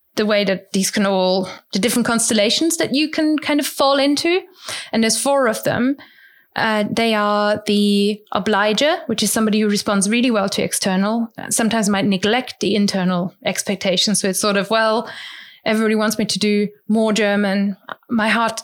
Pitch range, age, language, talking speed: 200-230 Hz, 20-39, English, 175 wpm